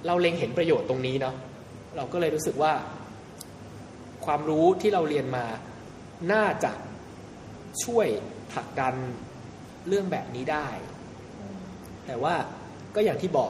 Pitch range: 130-180 Hz